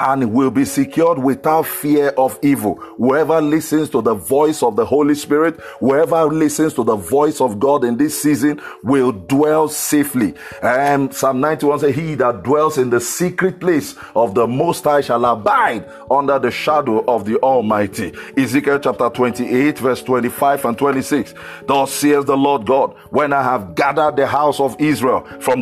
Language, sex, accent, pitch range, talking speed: English, male, Nigerian, 135-165 Hz, 175 wpm